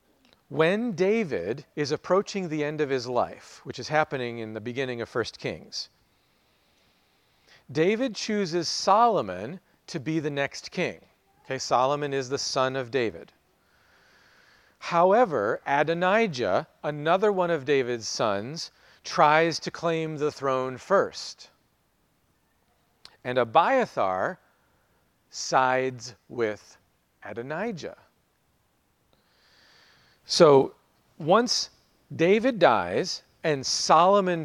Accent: American